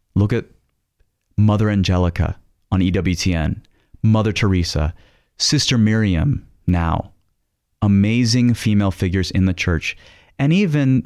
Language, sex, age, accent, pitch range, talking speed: English, male, 30-49, American, 90-110 Hz, 105 wpm